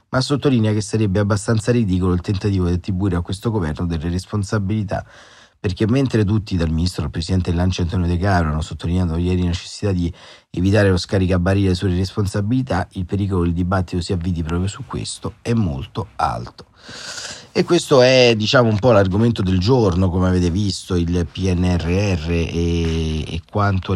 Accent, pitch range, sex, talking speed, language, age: native, 85-105 Hz, male, 170 wpm, Italian, 30-49